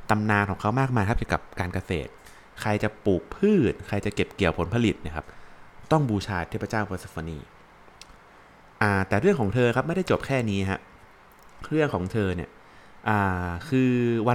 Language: Thai